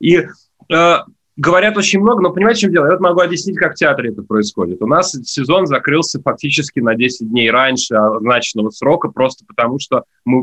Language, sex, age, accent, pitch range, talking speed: Russian, male, 20-39, native, 120-155 Hz, 190 wpm